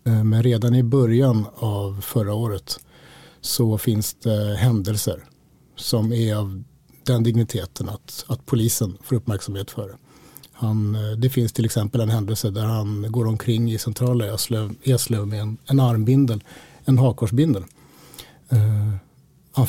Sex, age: male, 50-69